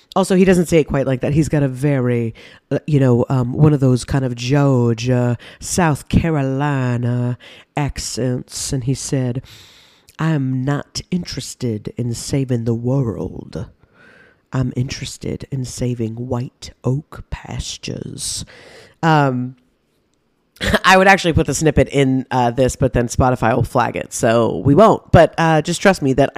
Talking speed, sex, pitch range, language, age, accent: 150 wpm, female, 135-175 Hz, English, 40-59, American